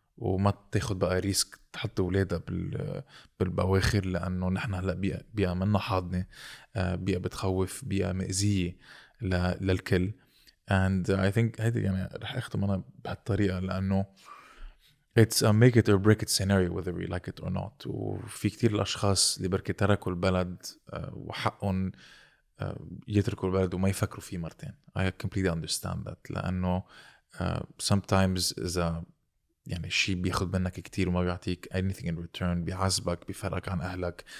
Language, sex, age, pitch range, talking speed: Arabic, male, 20-39, 90-100 Hz, 135 wpm